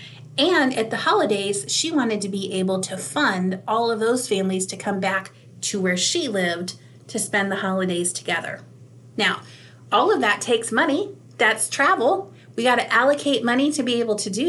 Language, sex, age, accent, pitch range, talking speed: English, female, 30-49, American, 195-260 Hz, 180 wpm